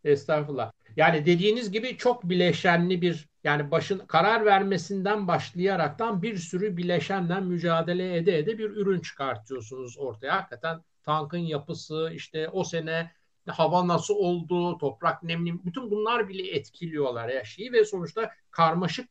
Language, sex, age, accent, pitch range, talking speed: Turkish, male, 60-79, native, 165-215 Hz, 130 wpm